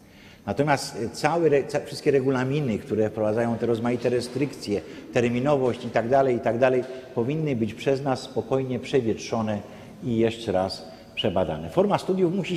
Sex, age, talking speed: male, 50-69, 125 wpm